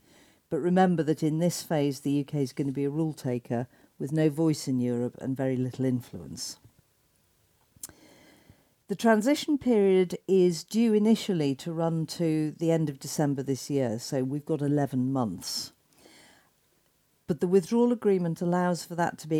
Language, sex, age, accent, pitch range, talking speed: English, female, 50-69, British, 135-170 Hz, 165 wpm